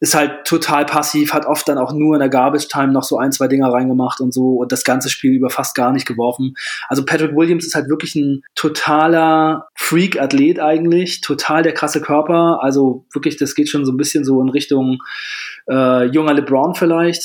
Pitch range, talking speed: 135-155 Hz, 200 wpm